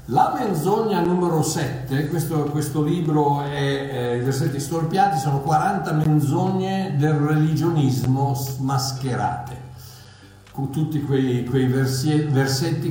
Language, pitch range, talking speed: Italian, 120-155 Hz, 105 wpm